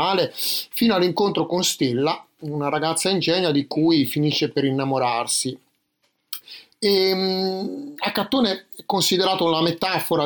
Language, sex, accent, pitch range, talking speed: Italian, male, native, 135-165 Hz, 105 wpm